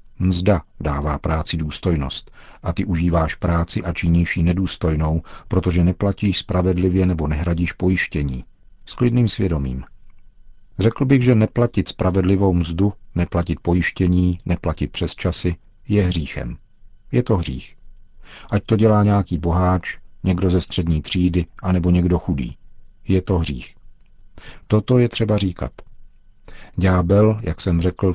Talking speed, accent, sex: 130 wpm, native, male